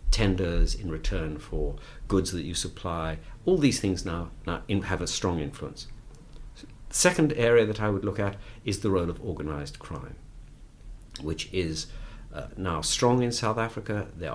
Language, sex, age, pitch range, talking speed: English, male, 50-69, 80-115 Hz, 165 wpm